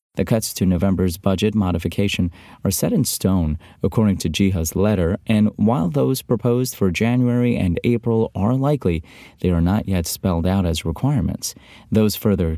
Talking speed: 160 wpm